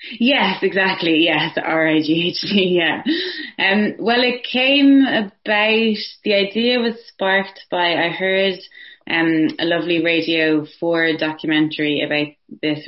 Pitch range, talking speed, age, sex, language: 145-180 Hz, 135 wpm, 20-39, female, English